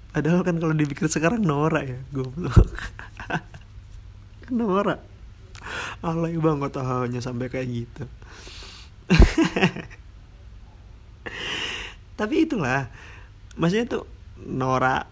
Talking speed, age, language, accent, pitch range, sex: 85 wpm, 20-39, Indonesian, native, 105-140 Hz, male